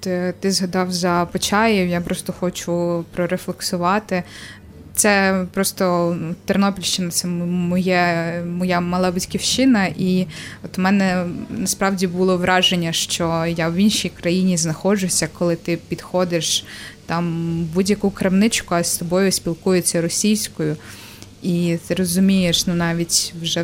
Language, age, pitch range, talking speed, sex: Ukrainian, 20-39, 170-190 Hz, 120 wpm, female